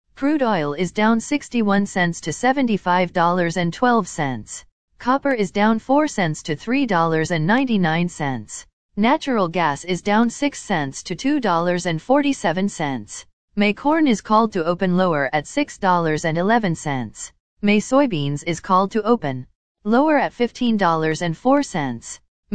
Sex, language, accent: female, English, American